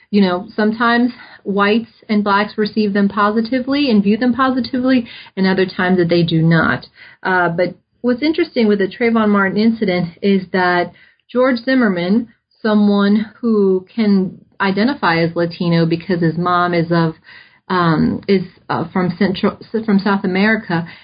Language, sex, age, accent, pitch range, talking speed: English, female, 30-49, American, 175-215 Hz, 150 wpm